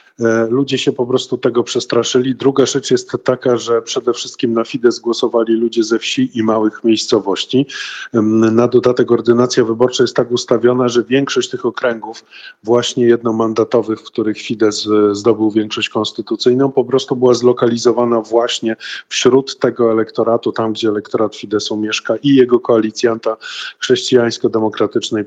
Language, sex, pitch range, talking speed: Polish, male, 110-125 Hz, 140 wpm